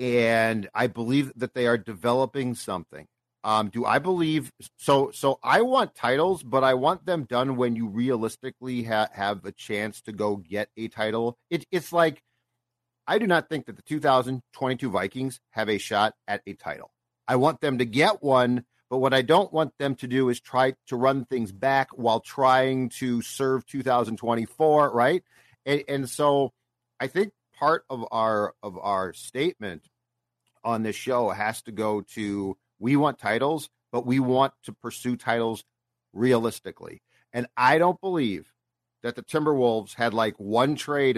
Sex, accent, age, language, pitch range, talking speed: male, American, 40-59, English, 115-135 Hz, 170 wpm